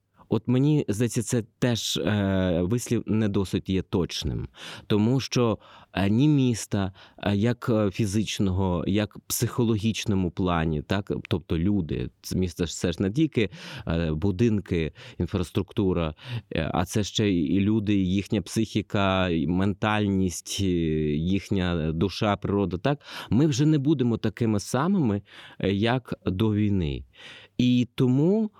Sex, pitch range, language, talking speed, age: male, 90-115 Hz, Ukrainian, 110 wpm, 30-49